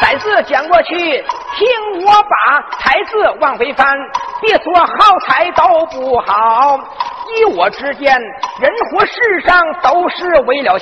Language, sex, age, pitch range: Chinese, male, 50-69, 275-425 Hz